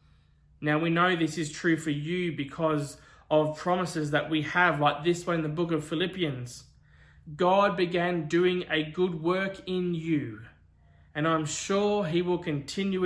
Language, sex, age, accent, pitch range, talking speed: English, male, 20-39, Australian, 130-175 Hz, 165 wpm